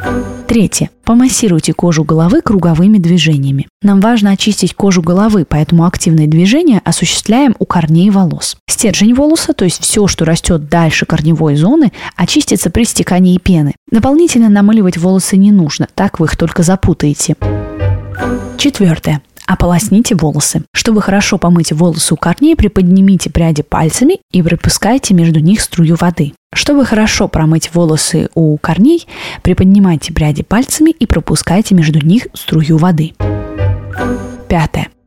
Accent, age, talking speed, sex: native, 20-39, 130 wpm, female